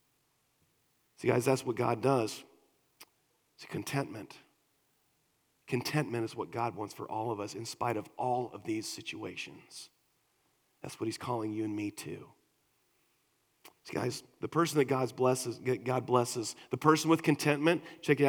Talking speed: 150 wpm